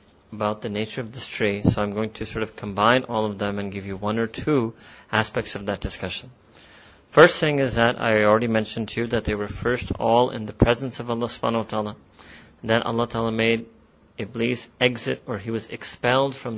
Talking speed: 215 wpm